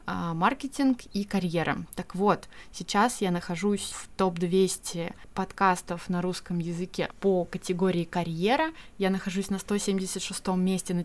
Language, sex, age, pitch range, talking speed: Russian, female, 20-39, 180-215 Hz, 125 wpm